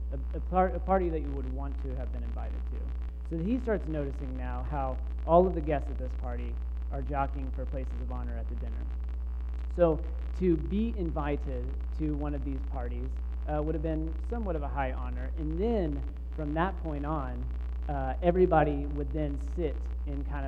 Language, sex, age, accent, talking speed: English, male, 30-49, American, 195 wpm